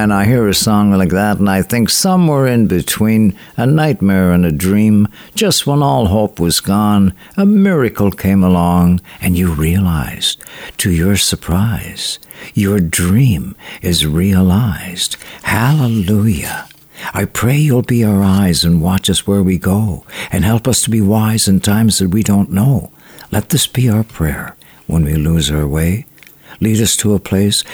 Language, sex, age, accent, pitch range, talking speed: English, male, 60-79, American, 95-120 Hz, 170 wpm